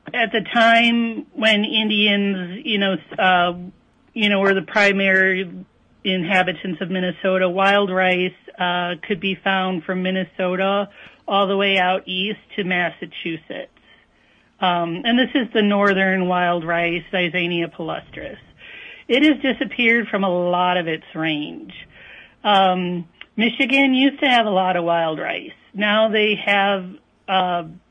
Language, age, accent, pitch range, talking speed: English, 40-59, American, 180-215 Hz, 140 wpm